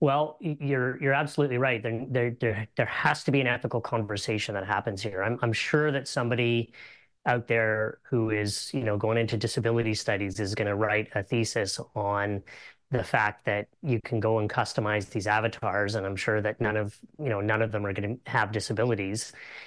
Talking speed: 195 wpm